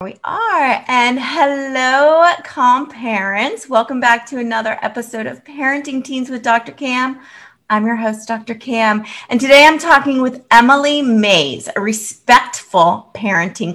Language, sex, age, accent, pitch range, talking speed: English, female, 30-49, American, 205-255 Hz, 140 wpm